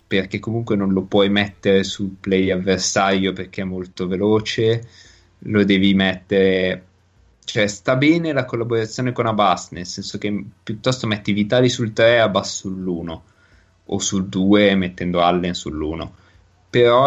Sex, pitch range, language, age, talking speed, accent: male, 90-105 Hz, Italian, 20-39, 145 wpm, native